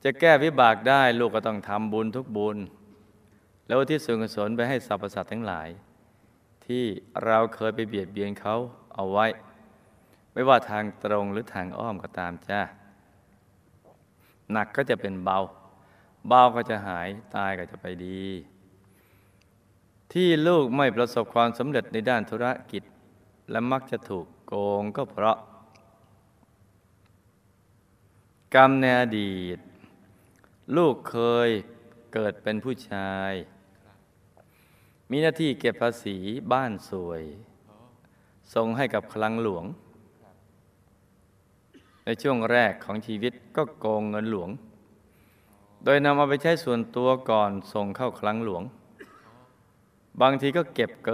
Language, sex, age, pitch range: Thai, male, 20-39, 100-120 Hz